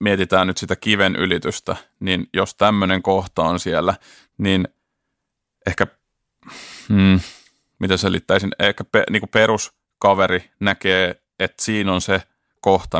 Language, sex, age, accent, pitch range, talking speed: Finnish, male, 30-49, native, 90-100 Hz, 105 wpm